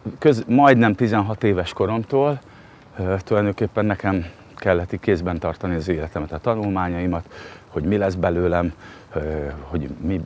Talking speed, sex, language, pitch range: 130 wpm, male, Hungarian, 85-105 Hz